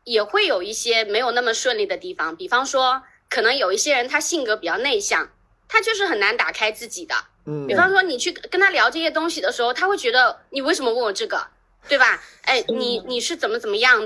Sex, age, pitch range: female, 20-39, 250-375 Hz